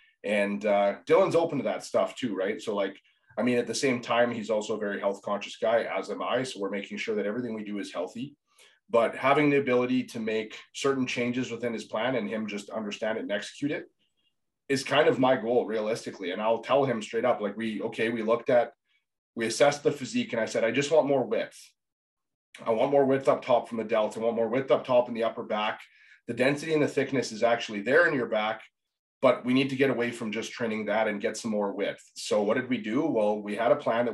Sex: male